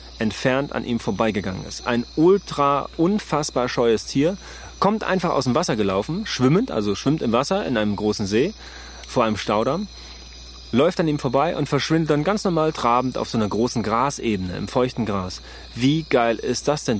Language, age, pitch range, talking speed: German, 30-49, 115-145 Hz, 180 wpm